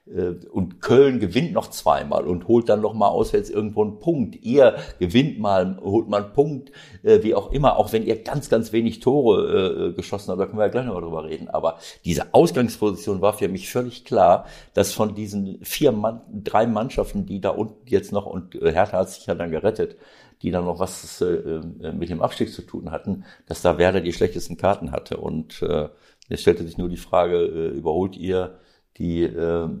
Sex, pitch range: male, 90-125 Hz